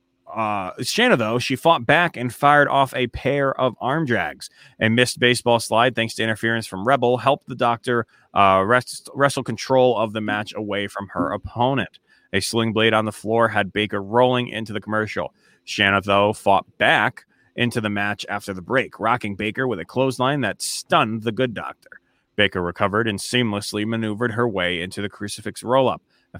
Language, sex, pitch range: English, male, 105-125 Hz